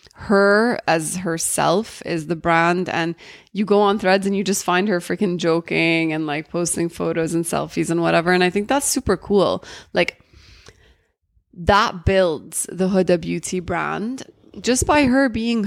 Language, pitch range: English, 170-205 Hz